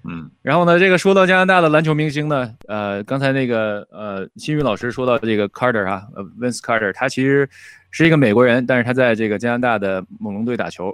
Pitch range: 105-140 Hz